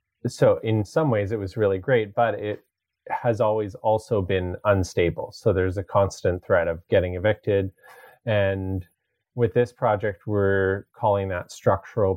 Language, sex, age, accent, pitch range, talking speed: English, male, 30-49, American, 95-115 Hz, 155 wpm